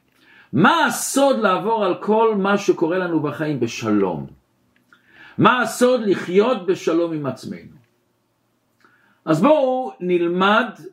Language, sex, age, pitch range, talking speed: Hebrew, male, 50-69, 155-215 Hz, 105 wpm